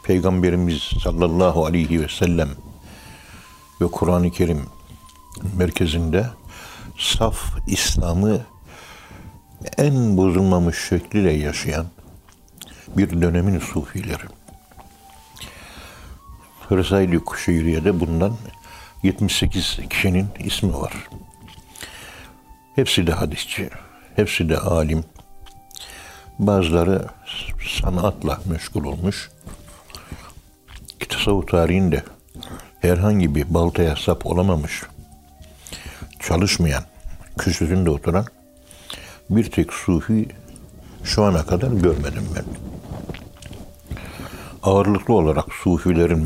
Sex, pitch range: male, 80-95 Hz